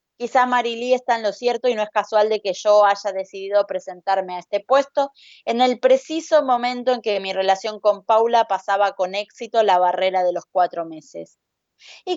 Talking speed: 190 wpm